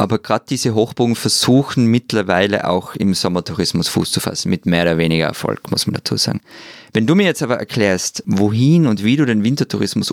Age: 20-39